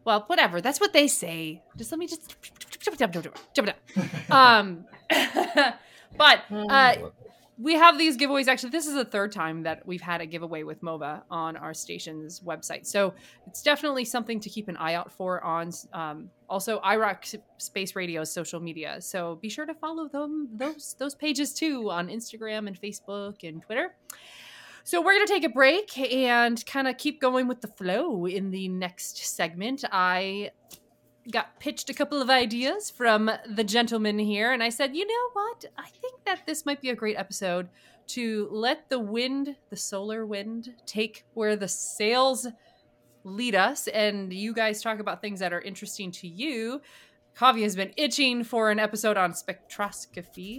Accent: American